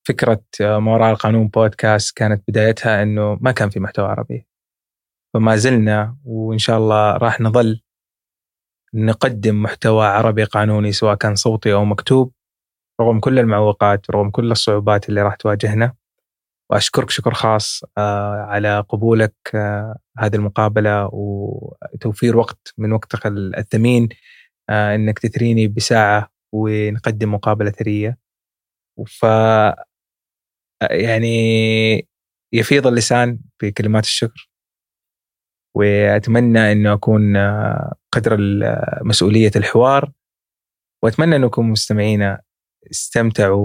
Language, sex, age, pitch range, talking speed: Arabic, male, 20-39, 105-120 Hz, 95 wpm